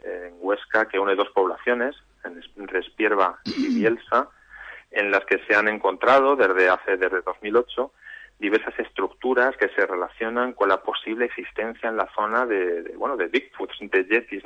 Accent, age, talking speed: Spanish, 30-49, 160 wpm